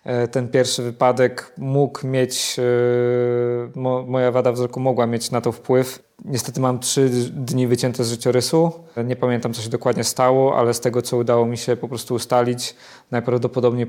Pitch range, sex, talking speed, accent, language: 115-125 Hz, male, 160 wpm, native, Polish